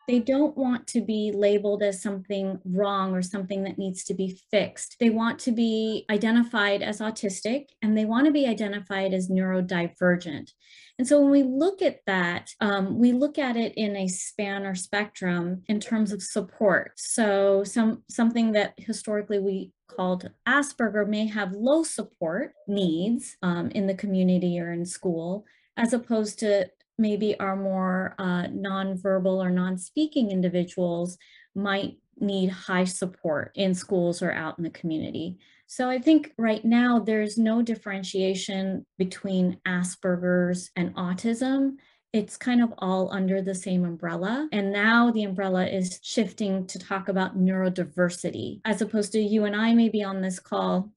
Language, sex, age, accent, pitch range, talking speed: English, female, 30-49, American, 185-225 Hz, 160 wpm